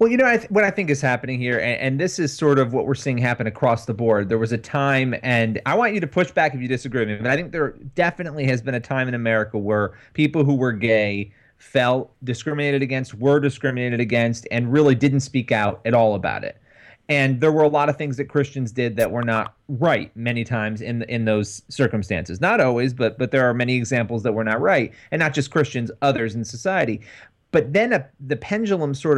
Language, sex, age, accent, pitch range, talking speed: English, male, 30-49, American, 115-145 Hz, 235 wpm